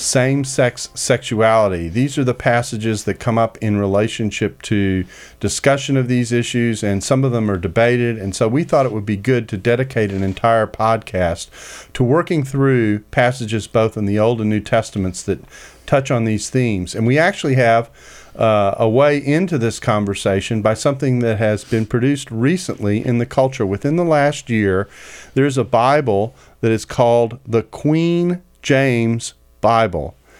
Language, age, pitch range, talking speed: English, 40-59, 105-130 Hz, 170 wpm